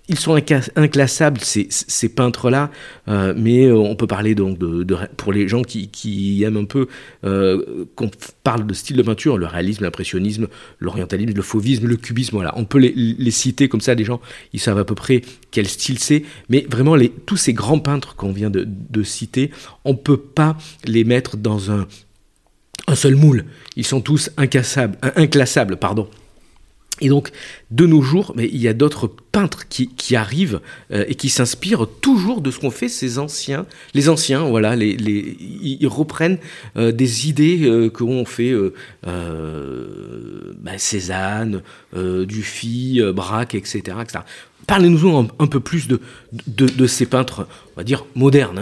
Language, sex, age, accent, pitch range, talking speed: French, male, 50-69, French, 105-140 Hz, 180 wpm